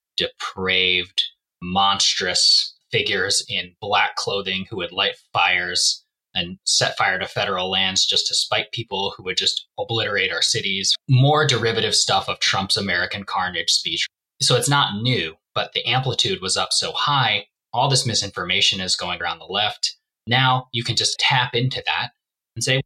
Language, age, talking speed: English, 20-39, 165 wpm